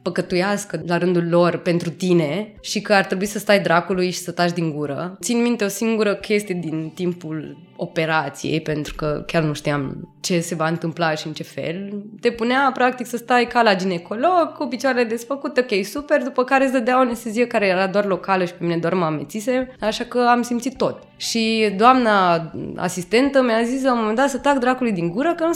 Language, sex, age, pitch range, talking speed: Romanian, female, 20-39, 175-235 Hz, 210 wpm